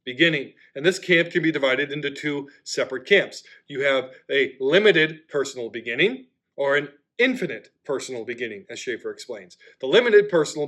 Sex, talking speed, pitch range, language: male, 155 wpm, 140-180 Hz, English